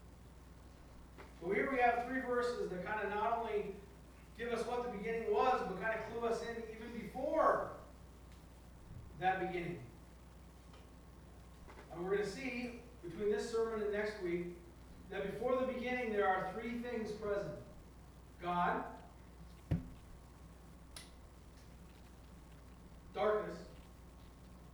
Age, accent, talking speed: 40-59, American, 120 wpm